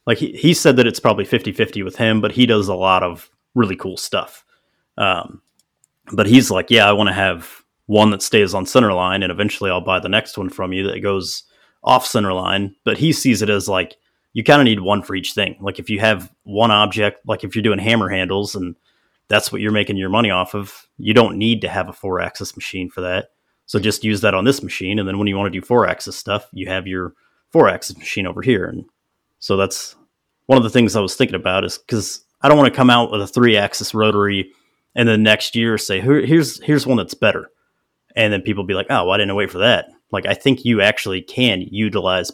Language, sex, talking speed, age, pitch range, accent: English, male, 245 wpm, 30-49, 95-110 Hz, American